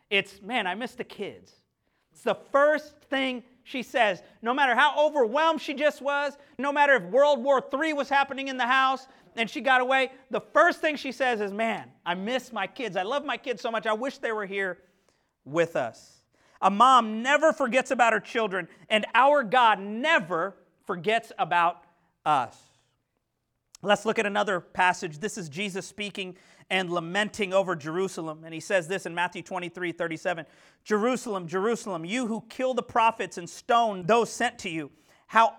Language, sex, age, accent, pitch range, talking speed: English, male, 40-59, American, 180-250 Hz, 180 wpm